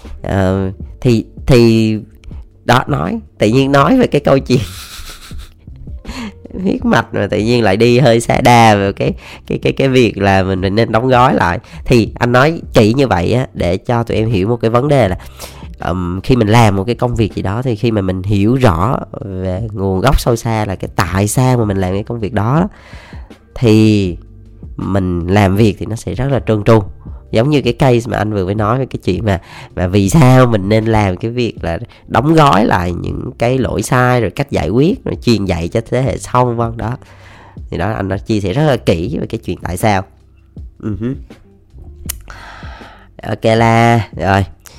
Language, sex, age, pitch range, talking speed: Vietnamese, female, 20-39, 95-120 Hz, 205 wpm